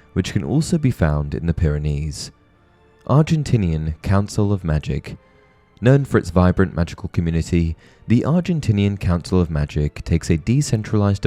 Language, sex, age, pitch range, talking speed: English, male, 20-39, 80-115 Hz, 140 wpm